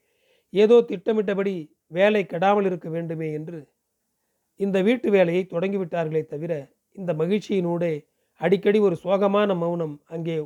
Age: 40-59